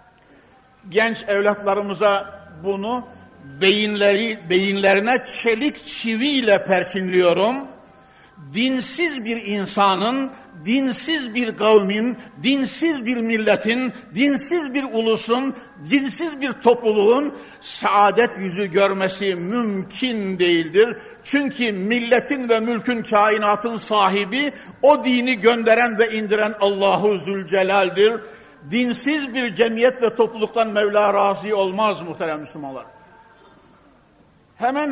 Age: 60-79